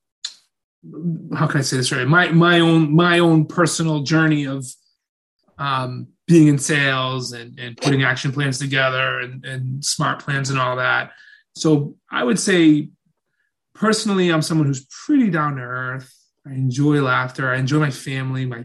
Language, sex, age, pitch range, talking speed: English, male, 20-39, 130-165 Hz, 165 wpm